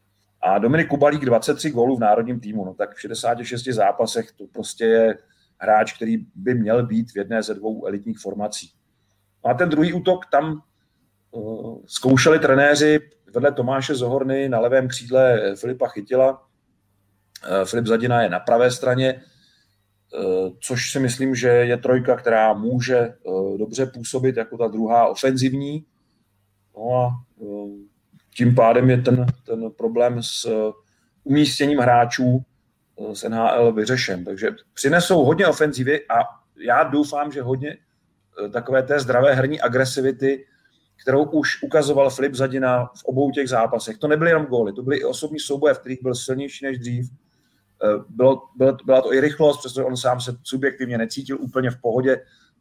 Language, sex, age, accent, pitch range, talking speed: Czech, male, 40-59, native, 115-135 Hz, 145 wpm